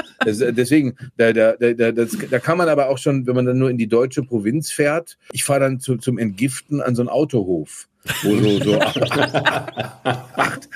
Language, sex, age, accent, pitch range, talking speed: German, male, 40-59, German, 105-130 Hz, 200 wpm